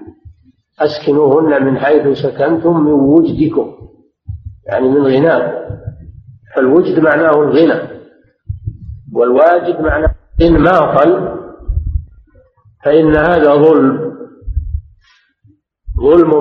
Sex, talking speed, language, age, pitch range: male, 75 wpm, Arabic, 50-69, 120-165 Hz